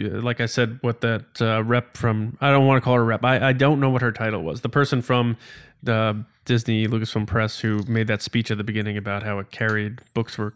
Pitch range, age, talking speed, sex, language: 120-135 Hz, 20-39, 245 wpm, male, English